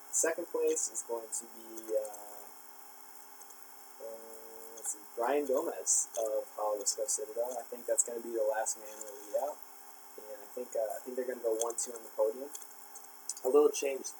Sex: male